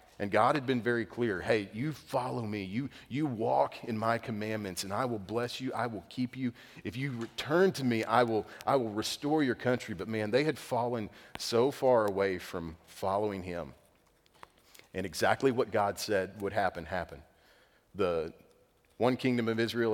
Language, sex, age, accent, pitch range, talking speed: English, male, 40-59, American, 105-130 Hz, 185 wpm